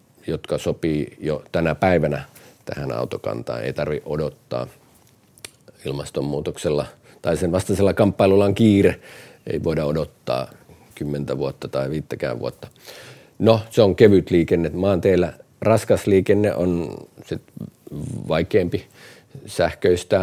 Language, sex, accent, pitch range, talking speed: Finnish, male, native, 80-95 Hz, 110 wpm